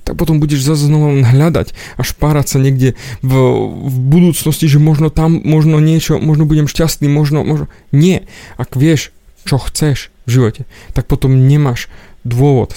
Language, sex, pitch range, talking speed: Slovak, male, 115-140 Hz, 160 wpm